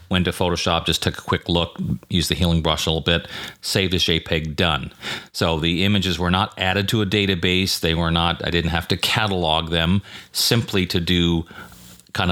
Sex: male